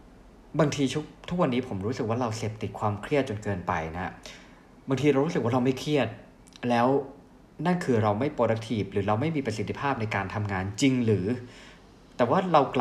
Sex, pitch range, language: male, 105-135 Hz, Thai